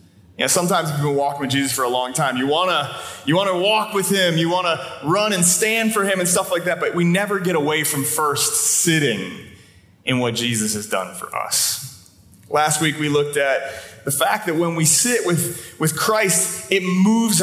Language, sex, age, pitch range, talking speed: English, male, 30-49, 135-190 Hz, 215 wpm